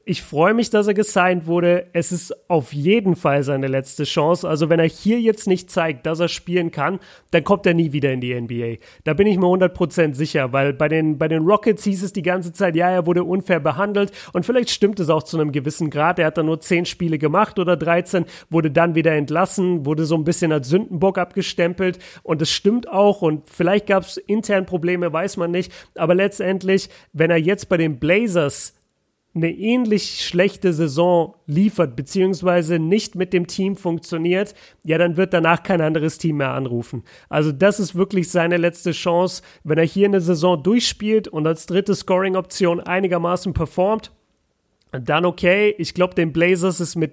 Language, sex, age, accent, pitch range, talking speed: German, male, 40-59, German, 160-185 Hz, 195 wpm